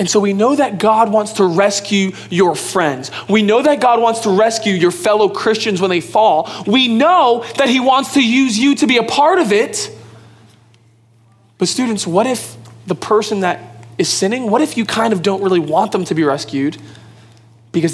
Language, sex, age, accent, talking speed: English, male, 20-39, American, 200 wpm